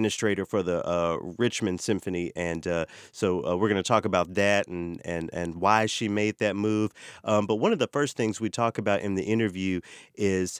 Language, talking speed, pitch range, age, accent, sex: English, 205 wpm, 95-115 Hz, 30-49, American, male